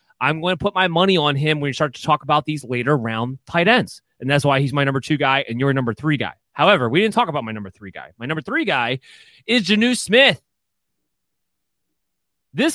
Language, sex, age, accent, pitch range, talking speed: English, male, 30-49, American, 135-185 Hz, 230 wpm